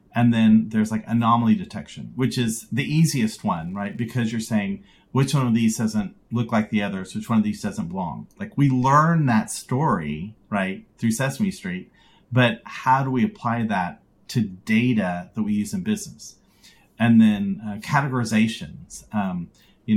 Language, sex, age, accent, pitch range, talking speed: English, male, 40-59, American, 110-175 Hz, 175 wpm